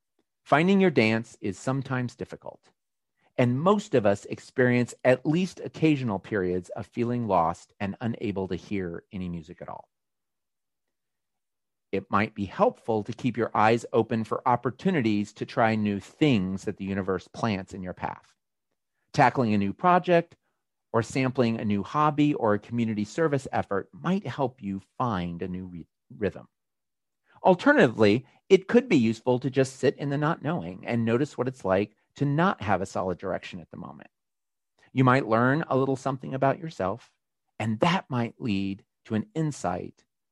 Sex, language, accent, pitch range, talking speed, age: male, English, American, 105-140 Hz, 165 wpm, 40-59